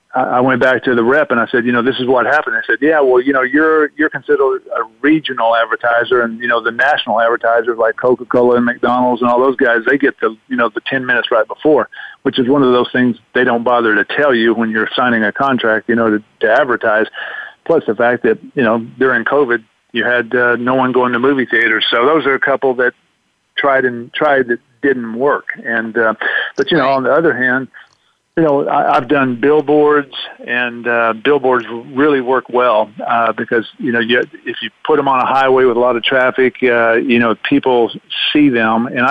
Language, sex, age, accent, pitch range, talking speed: English, male, 50-69, American, 115-135 Hz, 225 wpm